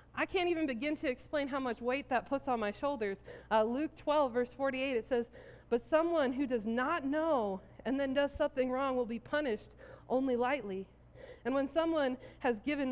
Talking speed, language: 195 wpm, English